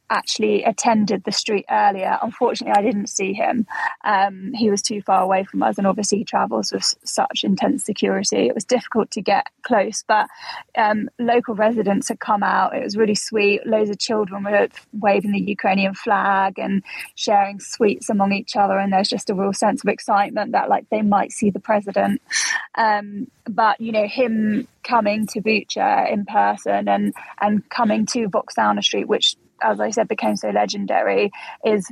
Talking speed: 180 wpm